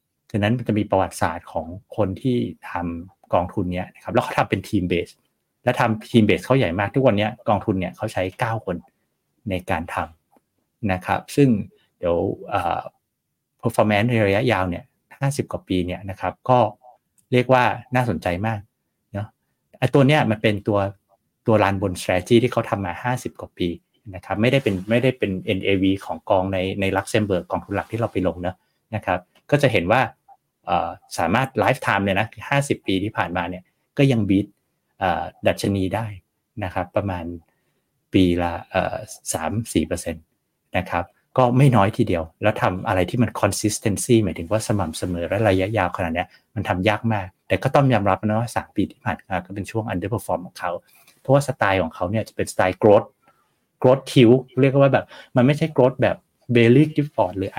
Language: Thai